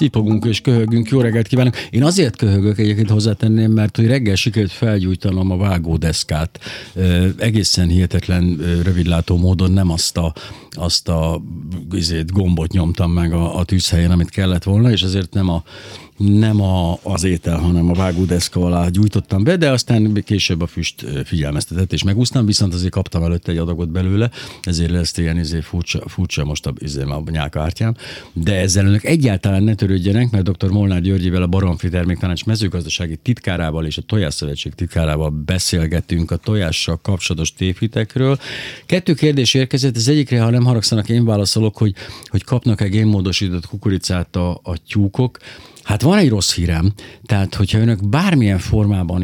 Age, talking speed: 60-79, 155 wpm